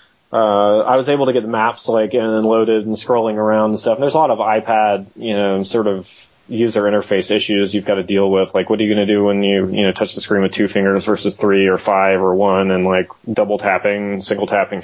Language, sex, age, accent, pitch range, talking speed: English, male, 20-39, American, 100-115 Hz, 255 wpm